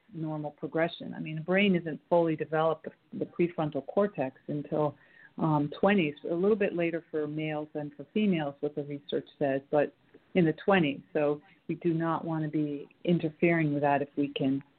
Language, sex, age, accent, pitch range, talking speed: English, female, 40-59, American, 150-180 Hz, 185 wpm